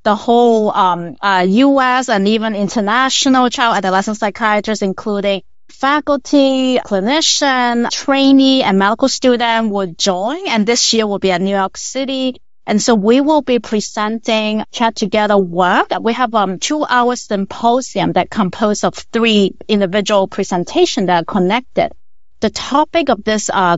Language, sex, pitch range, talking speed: English, female, 200-250 Hz, 145 wpm